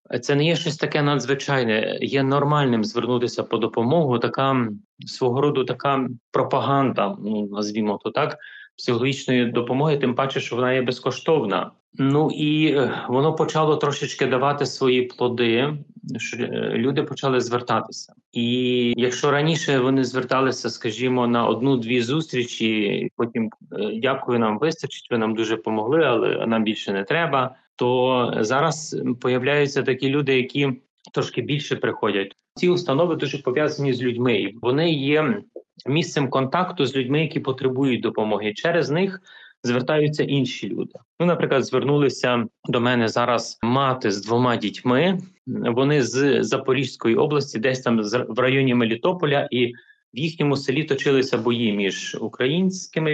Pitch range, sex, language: 120-145 Hz, male, Ukrainian